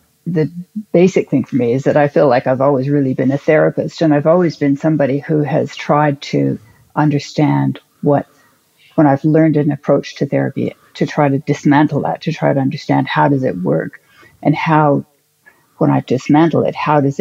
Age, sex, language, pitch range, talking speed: 60-79, female, English, 140-160 Hz, 190 wpm